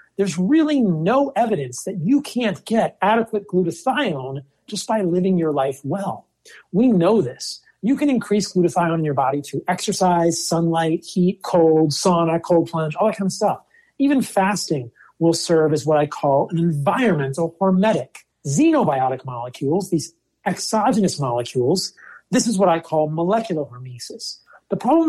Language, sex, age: English, male, 40-59